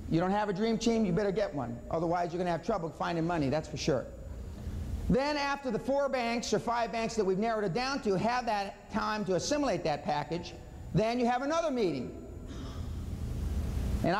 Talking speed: 200 wpm